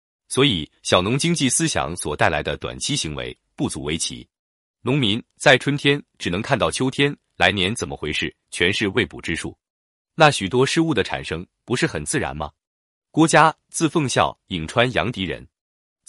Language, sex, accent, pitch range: Chinese, male, native, 95-150 Hz